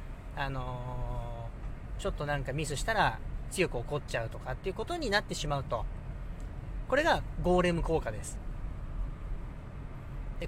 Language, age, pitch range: Japanese, 40-59, 130-190 Hz